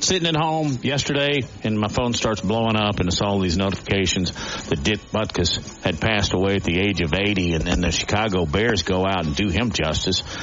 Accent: American